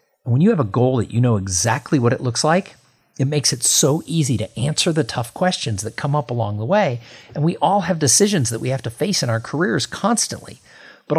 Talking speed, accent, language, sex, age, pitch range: 235 wpm, American, English, male, 50-69, 115-165 Hz